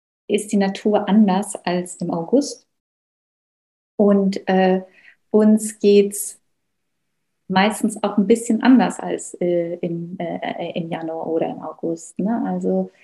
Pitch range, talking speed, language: 185-215 Hz, 125 wpm, German